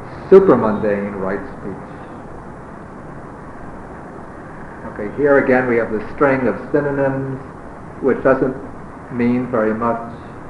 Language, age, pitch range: English, 50-69, 110-145 Hz